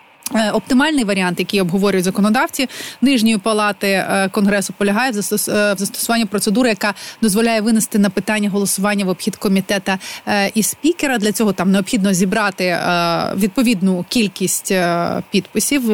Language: Ukrainian